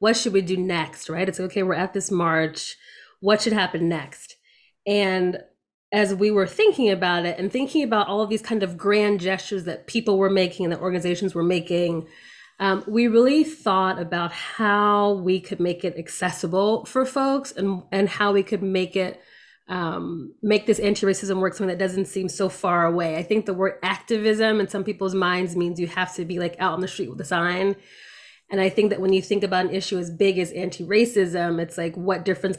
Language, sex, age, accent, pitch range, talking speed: English, female, 20-39, American, 180-210 Hz, 210 wpm